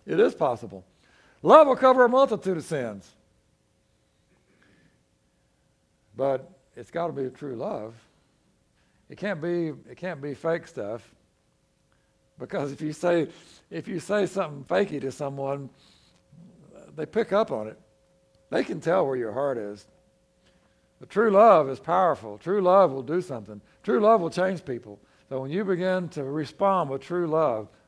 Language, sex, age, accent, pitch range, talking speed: English, male, 60-79, American, 120-170 Hz, 155 wpm